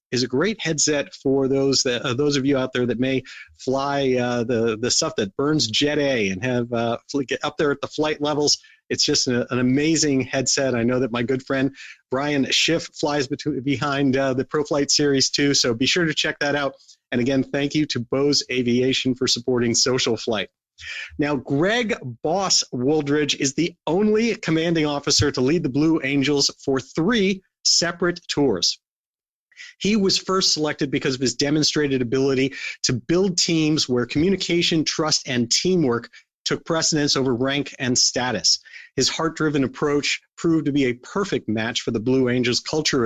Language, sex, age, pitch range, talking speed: English, male, 40-59, 130-155 Hz, 180 wpm